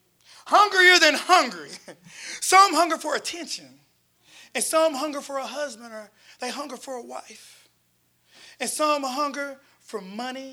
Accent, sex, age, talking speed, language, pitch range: American, male, 30-49, 135 wpm, English, 225-320 Hz